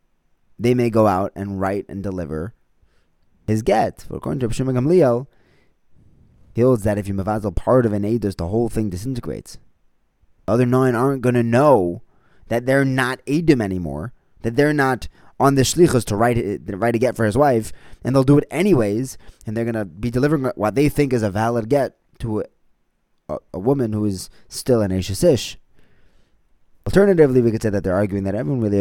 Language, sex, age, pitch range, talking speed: English, male, 20-39, 100-130 Hz, 195 wpm